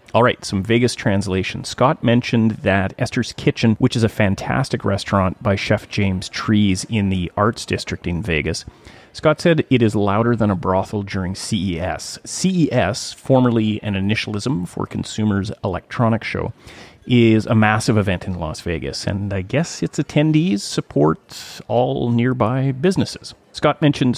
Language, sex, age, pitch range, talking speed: English, male, 30-49, 100-120 Hz, 150 wpm